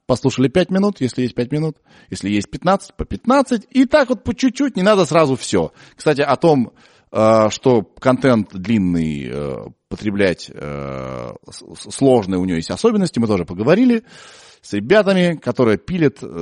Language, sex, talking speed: Russian, male, 145 wpm